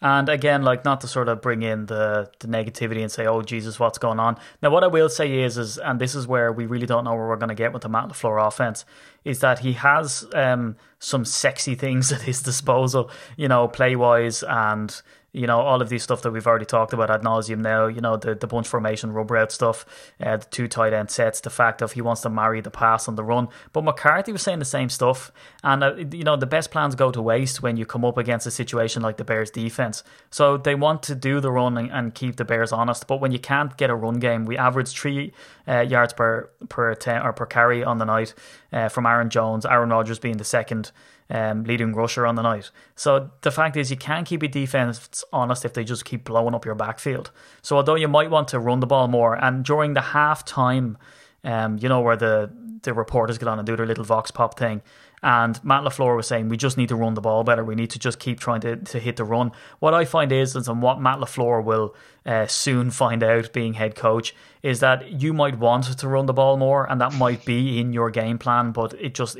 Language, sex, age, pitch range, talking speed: English, male, 20-39, 115-135 Hz, 250 wpm